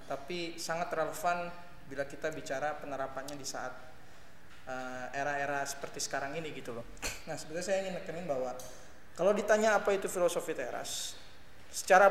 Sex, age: male, 20-39